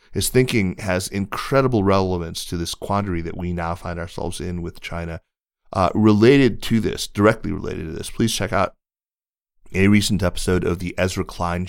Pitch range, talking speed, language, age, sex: 85-100 Hz, 175 wpm, English, 30-49, male